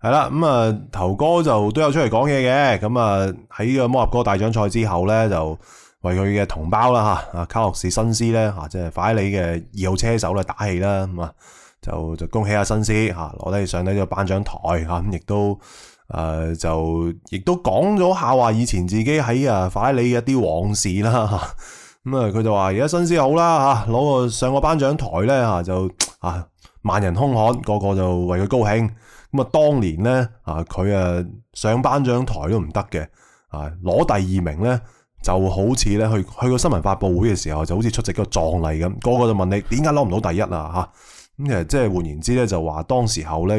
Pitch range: 90-120 Hz